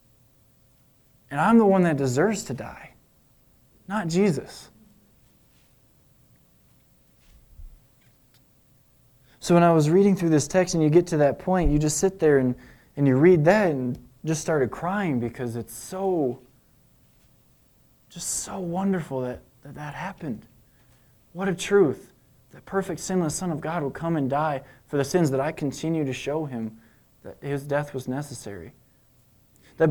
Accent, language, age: American, English, 20-39